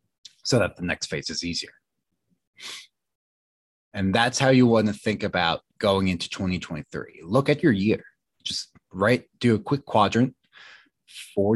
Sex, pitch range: male, 100-125 Hz